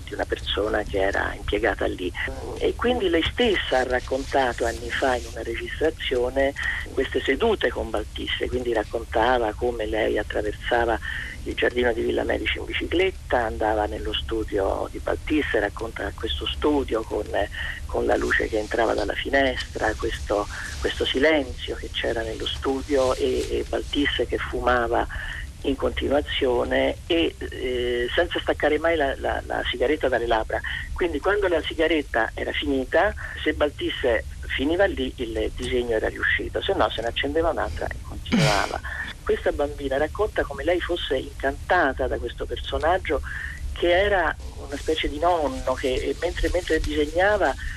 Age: 40-59